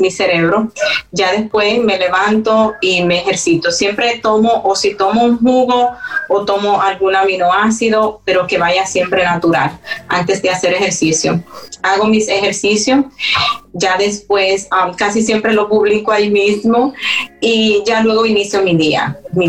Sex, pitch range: female, 180-215 Hz